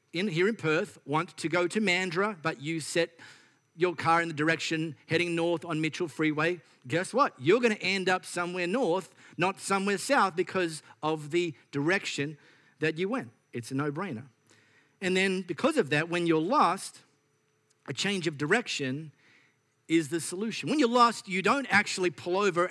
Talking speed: 175 wpm